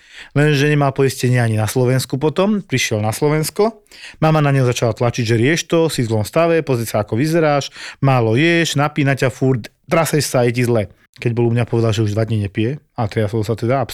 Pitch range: 110-140 Hz